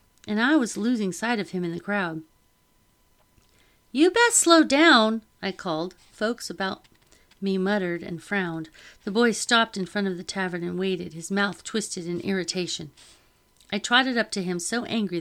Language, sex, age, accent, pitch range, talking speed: English, female, 40-59, American, 180-245 Hz, 175 wpm